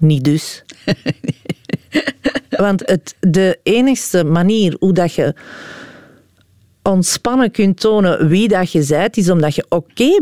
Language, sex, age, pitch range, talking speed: Dutch, female, 40-59, 150-200 Hz, 130 wpm